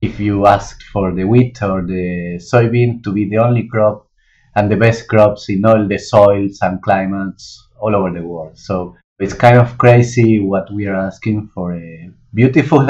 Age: 30-49